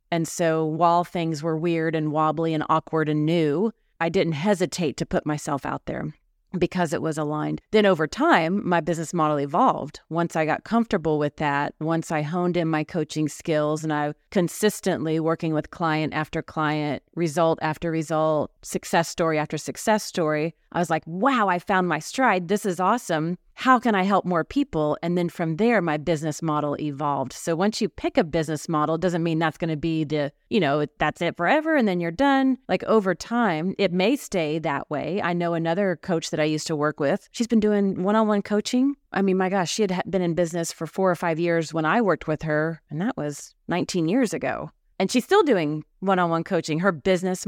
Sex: female